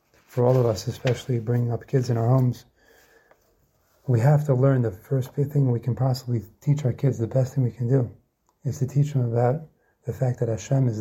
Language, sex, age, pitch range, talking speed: English, male, 30-49, 115-140 Hz, 220 wpm